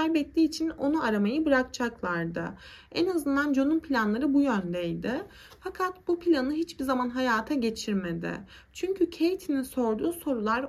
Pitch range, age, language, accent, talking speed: 225-300 Hz, 30-49, Turkish, native, 125 wpm